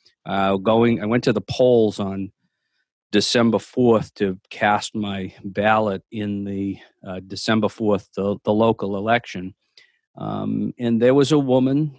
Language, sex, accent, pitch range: English, male, American, 105-125 Hz